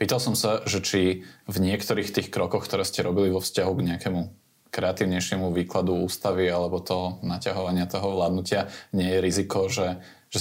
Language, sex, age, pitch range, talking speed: Slovak, male, 20-39, 90-100 Hz, 165 wpm